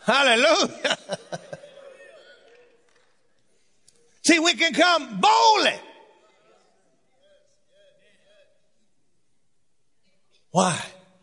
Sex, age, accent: male, 60-79, American